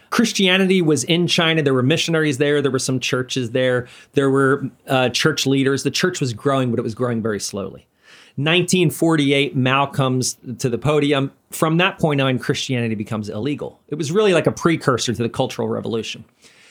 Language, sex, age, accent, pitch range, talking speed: English, male, 40-59, American, 125-165 Hz, 185 wpm